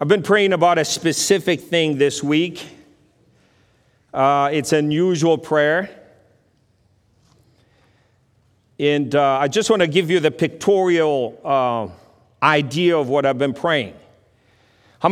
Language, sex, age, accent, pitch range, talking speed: English, male, 40-59, American, 125-170 Hz, 125 wpm